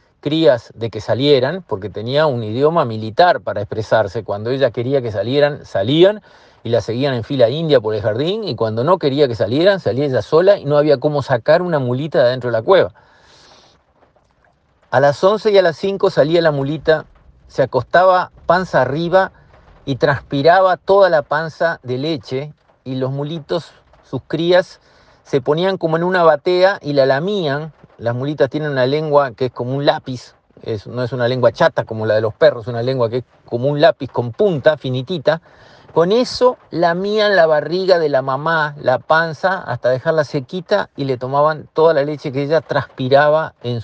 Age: 50-69